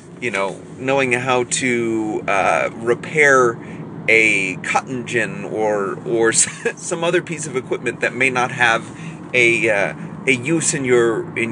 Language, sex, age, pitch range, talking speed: English, male, 30-49, 145-190 Hz, 150 wpm